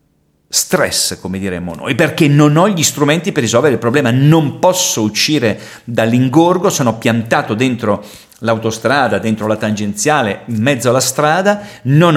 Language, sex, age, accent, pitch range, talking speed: Italian, male, 40-59, native, 115-155 Hz, 145 wpm